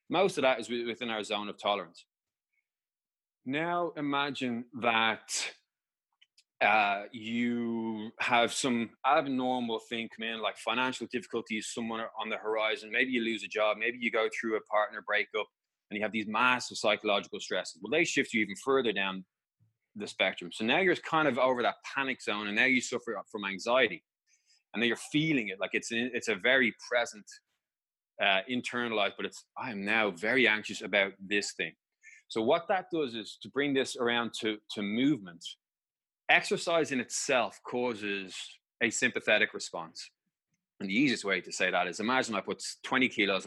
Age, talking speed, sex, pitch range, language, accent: 20-39, 175 wpm, male, 105-130 Hz, English, Irish